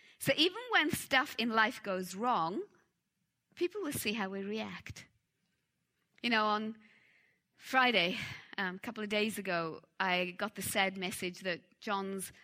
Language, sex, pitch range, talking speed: English, female, 180-220 Hz, 150 wpm